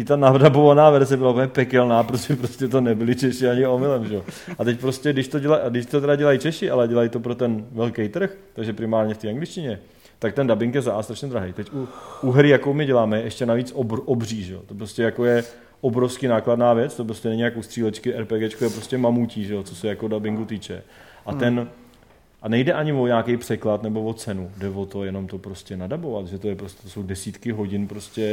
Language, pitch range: Czech, 100-120 Hz